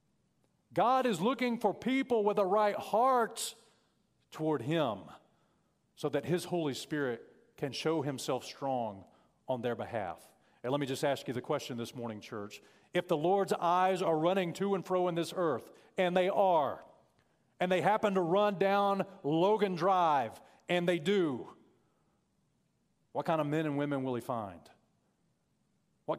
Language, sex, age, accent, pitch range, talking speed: English, male, 40-59, American, 150-205 Hz, 160 wpm